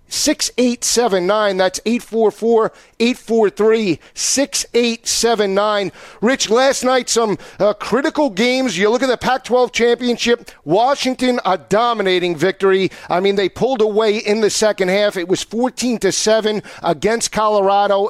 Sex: male